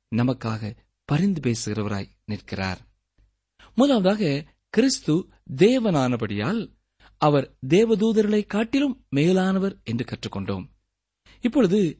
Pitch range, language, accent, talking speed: 110-175 Hz, Tamil, native, 70 wpm